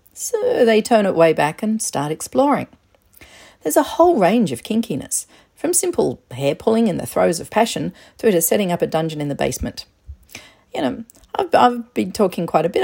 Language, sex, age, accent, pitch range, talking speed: English, female, 40-59, Australian, 170-245 Hz, 195 wpm